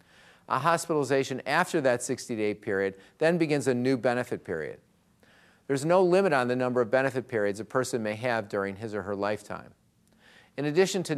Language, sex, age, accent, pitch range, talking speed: English, male, 50-69, American, 115-145 Hz, 175 wpm